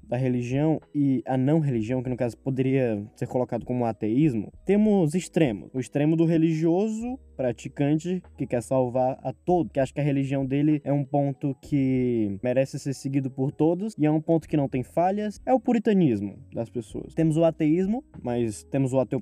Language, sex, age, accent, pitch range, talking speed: Portuguese, male, 10-29, Brazilian, 130-165 Hz, 190 wpm